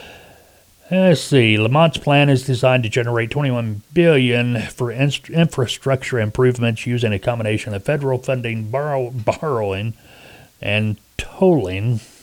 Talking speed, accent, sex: 120 wpm, American, male